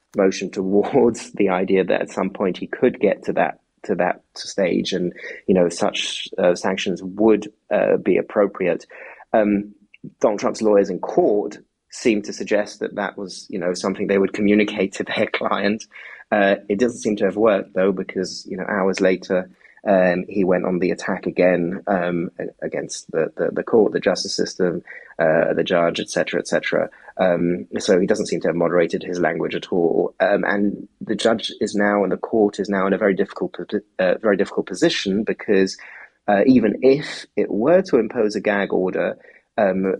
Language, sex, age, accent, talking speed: English, male, 20-39, British, 190 wpm